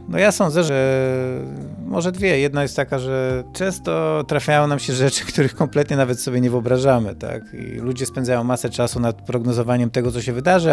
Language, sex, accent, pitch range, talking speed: Polish, male, native, 115-140 Hz, 185 wpm